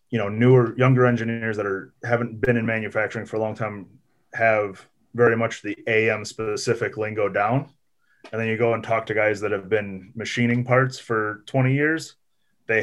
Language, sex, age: English, male, 30-49